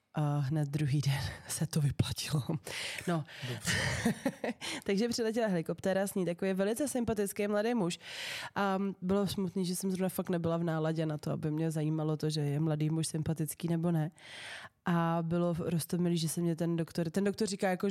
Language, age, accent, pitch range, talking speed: Czech, 20-39, native, 165-200 Hz, 180 wpm